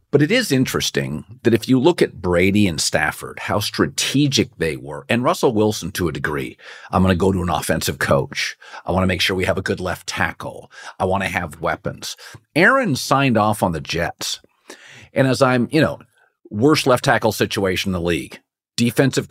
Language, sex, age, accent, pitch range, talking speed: English, male, 50-69, American, 95-135 Hz, 200 wpm